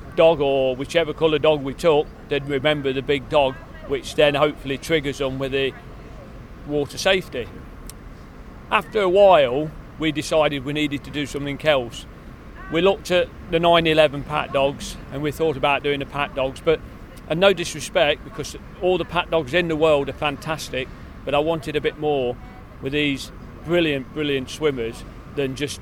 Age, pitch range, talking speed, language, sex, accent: 40-59, 130-160 Hz, 170 wpm, English, male, British